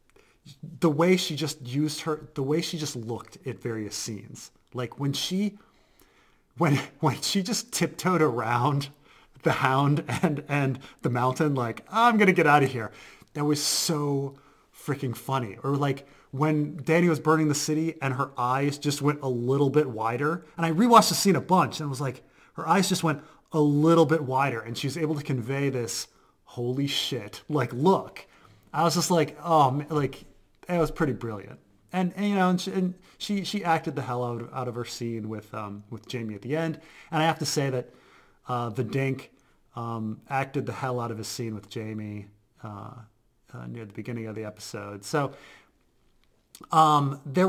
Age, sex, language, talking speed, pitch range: 30-49, male, English, 195 wpm, 120-155 Hz